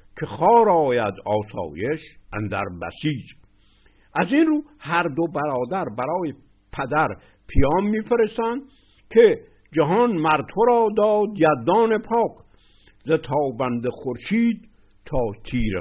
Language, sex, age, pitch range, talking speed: Persian, male, 60-79, 100-170 Hz, 105 wpm